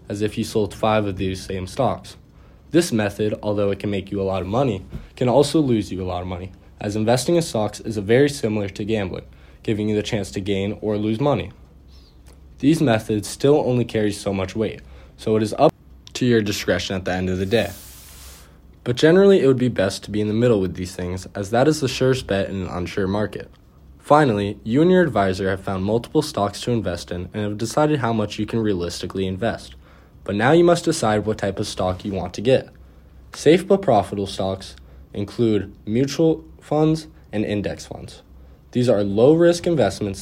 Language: English